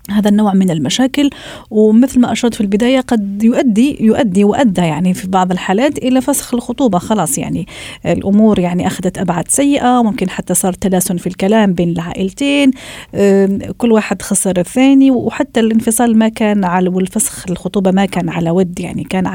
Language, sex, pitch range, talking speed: Arabic, female, 190-240 Hz, 160 wpm